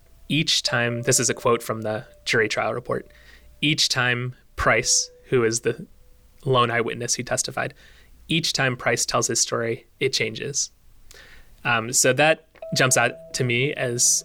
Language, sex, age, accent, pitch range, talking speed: English, male, 20-39, American, 95-130 Hz, 155 wpm